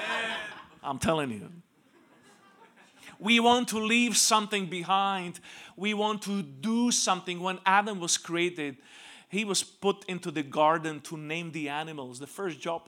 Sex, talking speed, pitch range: male, 145 wpm, 150-195 Hz